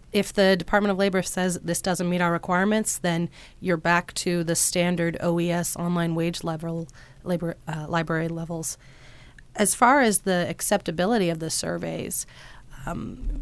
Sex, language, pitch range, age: female, English, 165-190 Hz, 30-49